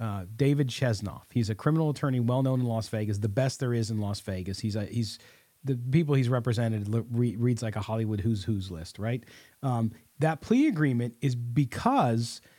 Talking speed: 190 wpm